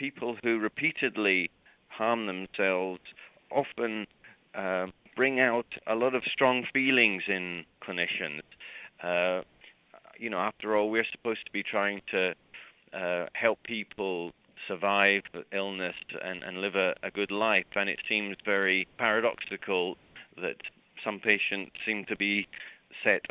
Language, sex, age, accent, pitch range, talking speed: English, male, 30-49, British, 95-115 Hz, 135 wpm